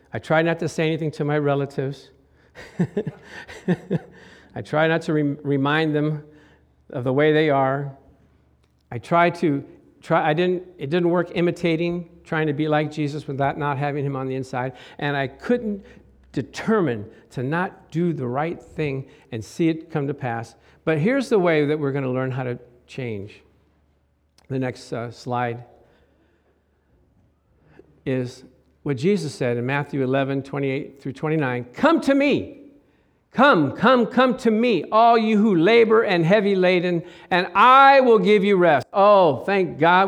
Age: 50-69